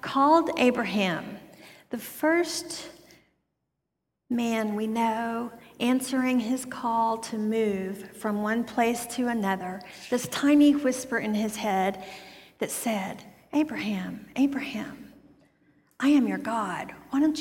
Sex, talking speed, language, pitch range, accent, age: female, 115 wpm, English, 200-250 Hz, American, 50-69